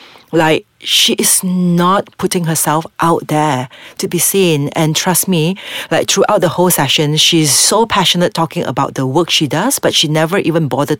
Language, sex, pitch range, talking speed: English, female, 155-195 Hz, 180 wpm